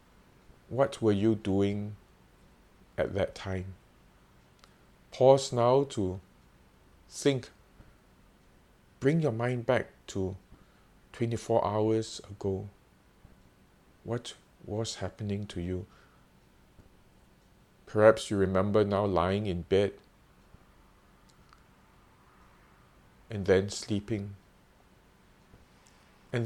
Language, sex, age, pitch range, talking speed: English, male, 50-69, 85-110 Hz, 80 wpm